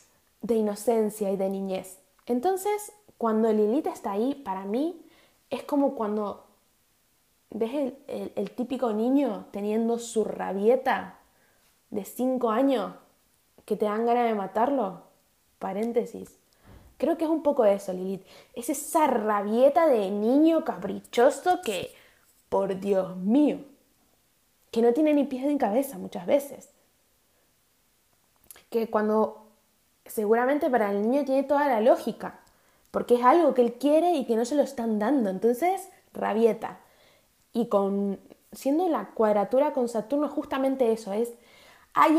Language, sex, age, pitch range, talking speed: Spanish, female, 20-39, 215-285 Hz, 135 wpm